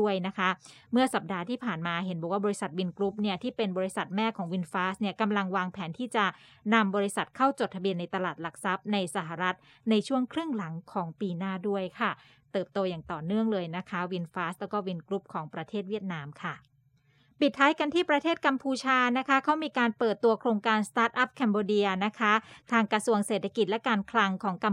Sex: female